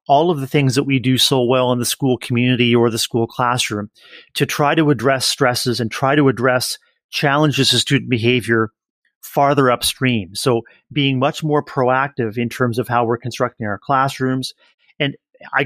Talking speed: 180 wpm